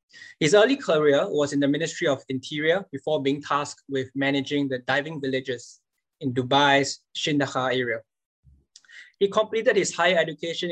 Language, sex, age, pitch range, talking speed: English, male, 20-39, 135-165 Hz, 145 wpm